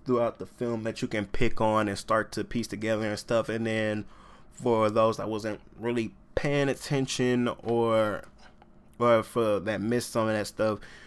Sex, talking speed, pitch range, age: male, 185 wpm, 105-120 Hz, 20-39